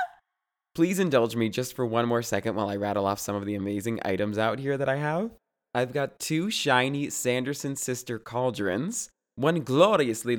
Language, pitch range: English, 115-180 Hz